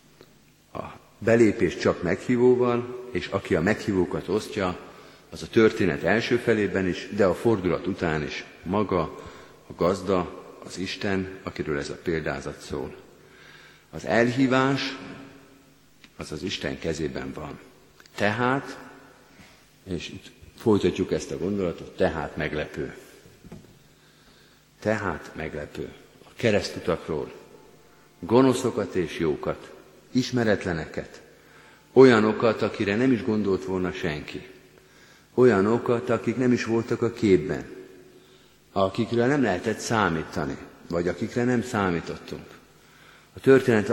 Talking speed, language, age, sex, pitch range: 105 wpm, Hungarian, 50-69, male, 90-120 Hz